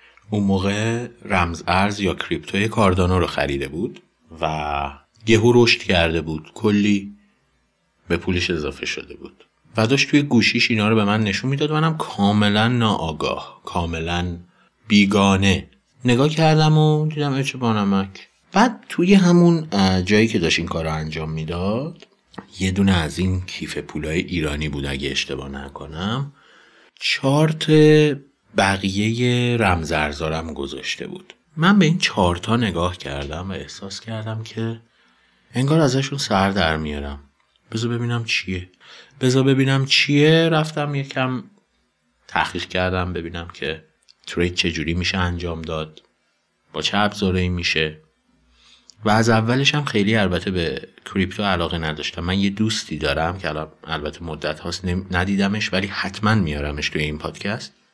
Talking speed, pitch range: 135 wpm, 85-120 Hz